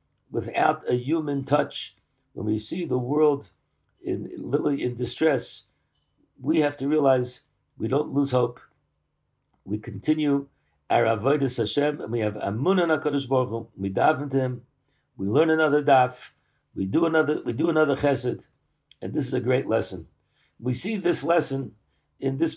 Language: English